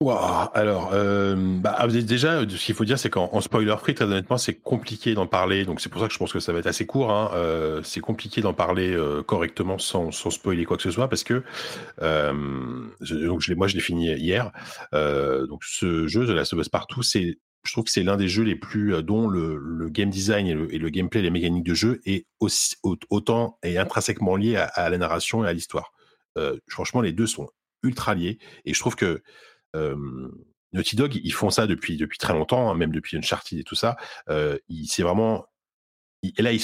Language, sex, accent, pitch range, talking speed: French, male, French, 85-110 Hz, 230 wpm